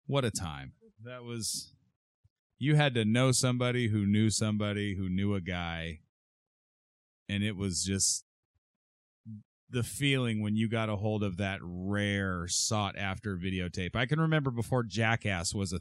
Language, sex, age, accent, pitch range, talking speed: English, male, 30-49, American, 95-120 Hz, 155 wpm